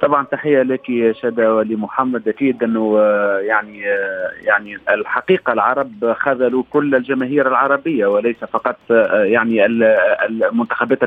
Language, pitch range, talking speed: Arabic, 120-170 Hz, 110 wpm